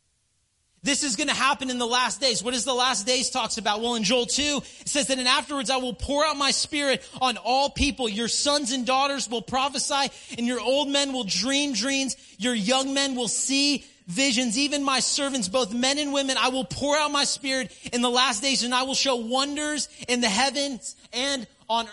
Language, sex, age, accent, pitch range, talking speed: English, male, 30-49, American, 235-280 Hz, 220 wpm